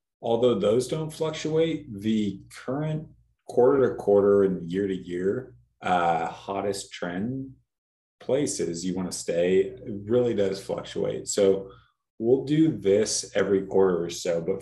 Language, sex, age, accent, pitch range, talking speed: English, male, 30-49, American, 95-120 Hz, 135 wpm